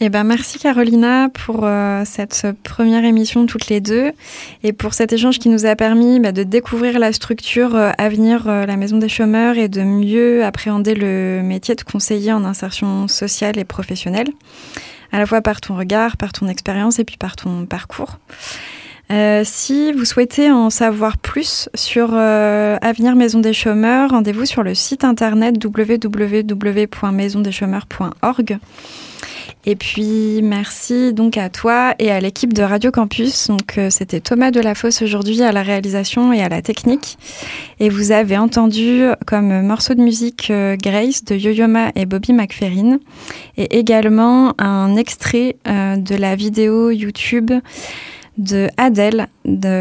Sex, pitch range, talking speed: female, 205-235 Hz, 155 wpm